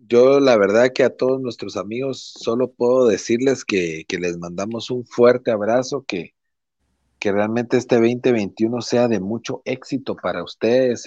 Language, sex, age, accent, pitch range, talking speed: Spanish, male, 40-59, Mexican, 100-130 Hz, 155 wpm